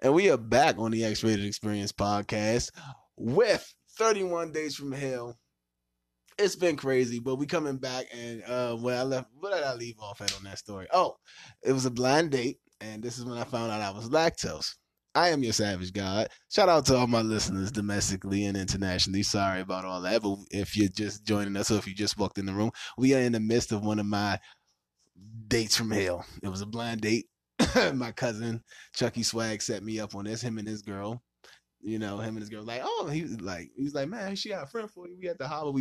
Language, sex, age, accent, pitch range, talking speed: English, male, 20-39, American, 95-125 Hz, 230 wpm